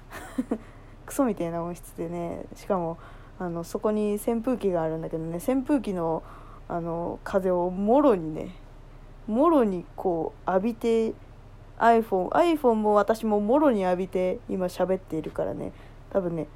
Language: Japanese